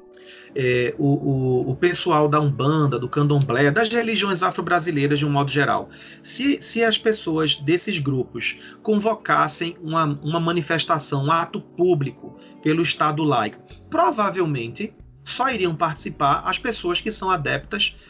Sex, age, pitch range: male, 30-49, 140-185 Hz